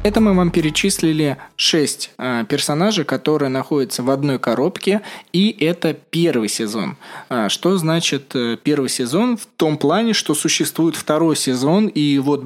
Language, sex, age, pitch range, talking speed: Russian, male, 20-39, 130-165 Hz, 135 wpm